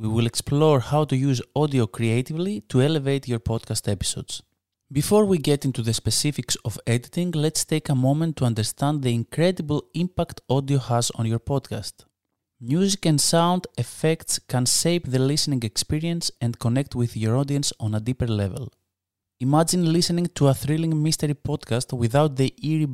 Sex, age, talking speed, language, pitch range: male, 20-39, 165 wpm, English, 115-150 Hz